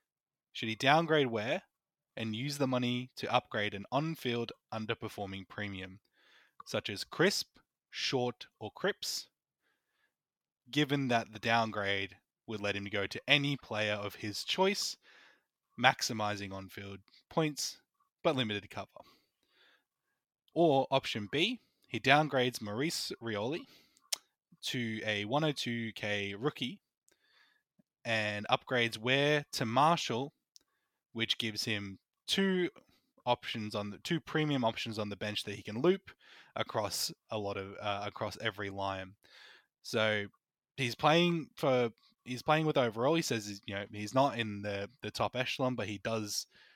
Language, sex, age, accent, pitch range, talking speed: English, male, 20-39, Australian, 105-135 Hz, 135 wpm